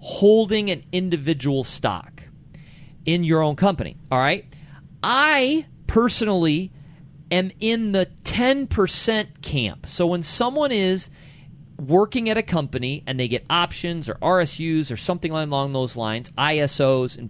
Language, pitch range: English, 140-195 Hz